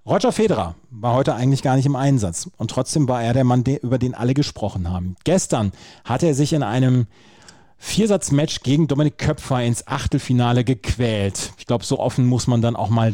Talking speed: 190 wpm